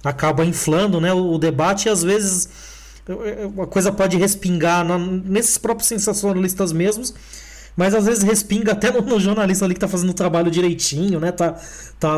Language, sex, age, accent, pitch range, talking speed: English, male, 20-39, Brazilian, 155-195 Hz, 160 wpm